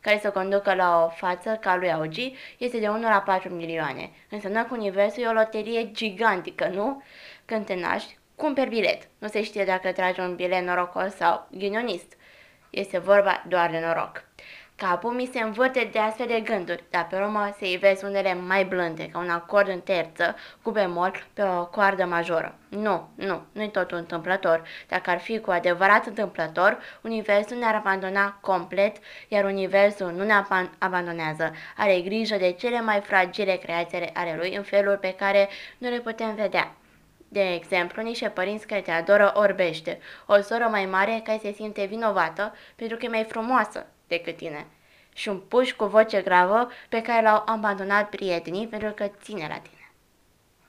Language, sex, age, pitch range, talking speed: Romanian, female, 20-39, 185-215 Hz, 175 wpm